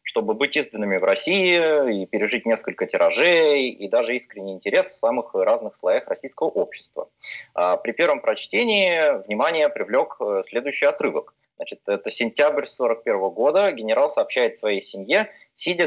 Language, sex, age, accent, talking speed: Russian, male, 20-39, native, 135 wpm